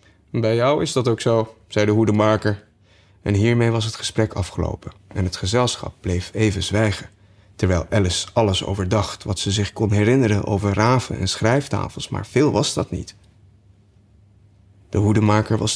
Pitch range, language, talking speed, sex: 100-120 Hz, Dutch, 160 wpm, male